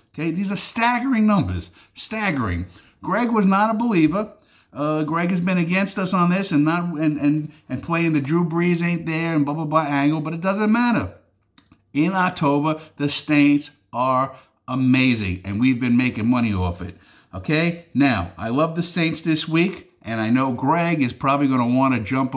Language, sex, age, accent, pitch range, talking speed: English, male, 50-69, American, 115-155 Hz, 190 wpm